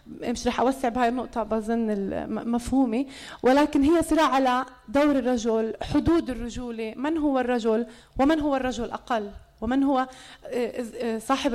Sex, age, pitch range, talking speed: female, 30-49, 225-275 Hz, 130 wpm